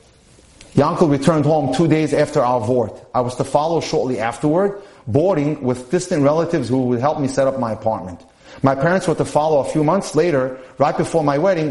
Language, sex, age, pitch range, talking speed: English, male, 30-49, 130-165 Hz, 200 wpm